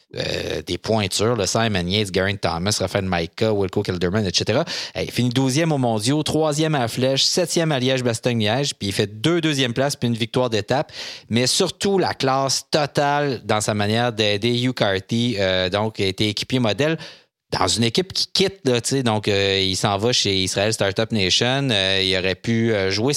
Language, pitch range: French, 100-130 Hz